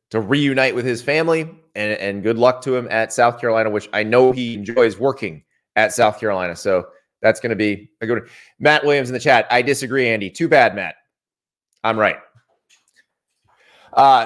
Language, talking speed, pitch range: English, 190 wpm, 125-185 Hz